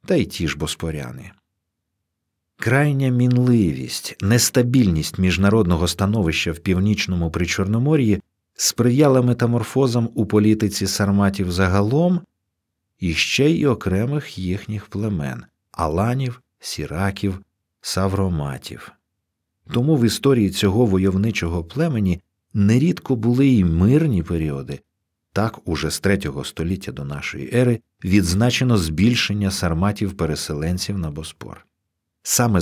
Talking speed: 100 wpm